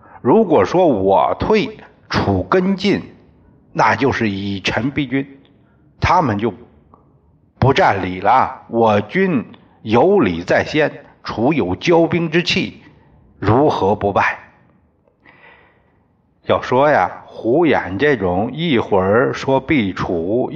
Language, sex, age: Chinese, male, 60-79